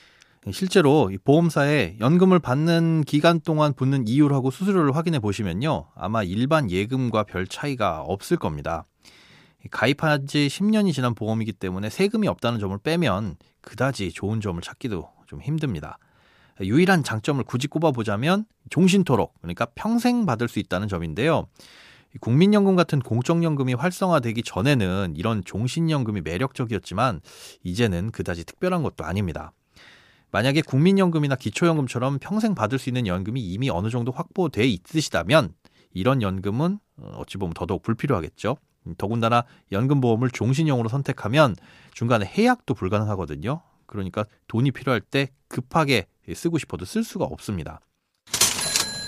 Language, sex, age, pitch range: Korean, male, 30-49, 105-160 Hz